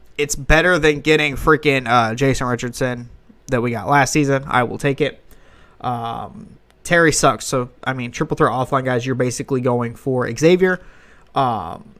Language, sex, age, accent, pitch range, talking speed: English, male, 20-39, American, 125-150 Hz, 165 wpm